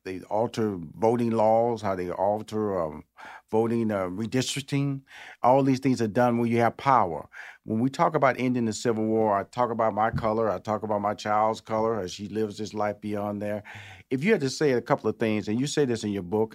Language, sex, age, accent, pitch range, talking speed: English, male, 40-59, American, 110-130 Hz, 225 wpm